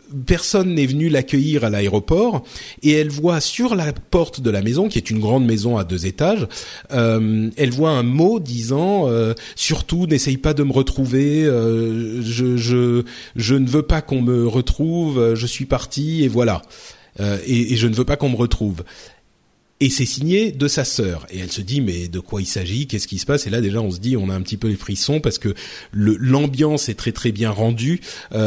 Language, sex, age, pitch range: French, male, 40-59, 115-150 Hz